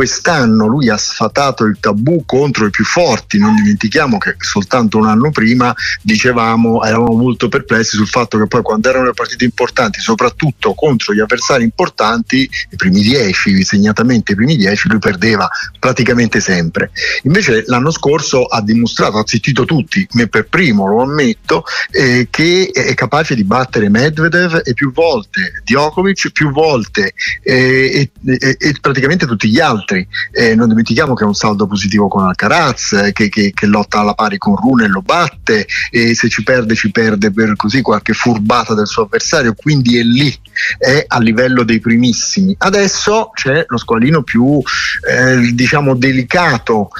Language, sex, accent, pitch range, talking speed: Italian, male, native, 115-160 Hz, 165 wpm